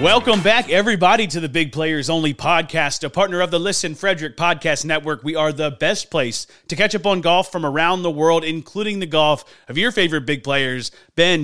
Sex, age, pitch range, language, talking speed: male, 30-49, 155-200 Hz, English, 210 wpm